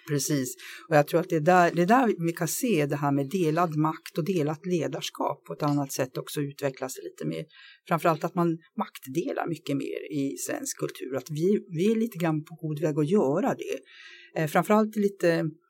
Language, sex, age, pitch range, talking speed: Swedish, female, 50-69, 145-190 Hz, 195 wpm